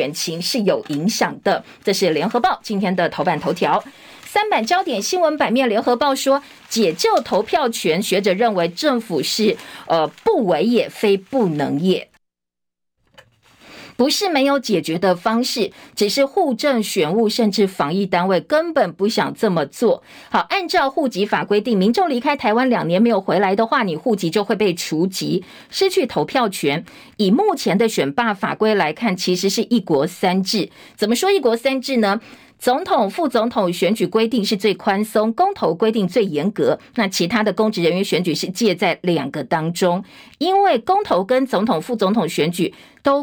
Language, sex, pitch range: Chinese, female, 190-255 Hz